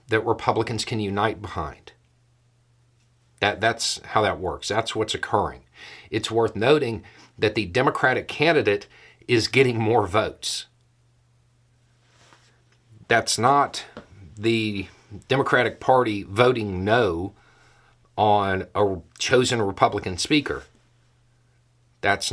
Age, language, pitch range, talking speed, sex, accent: 50-69, English, 105-120 Hz, 95 wpm, male, American